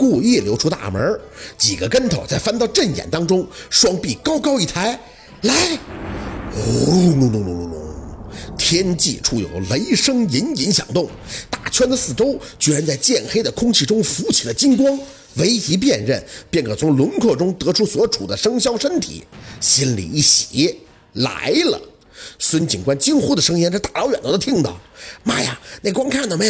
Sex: male